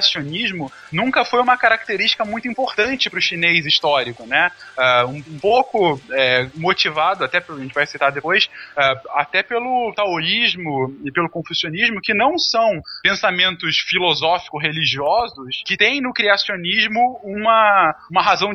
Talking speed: 130 wpm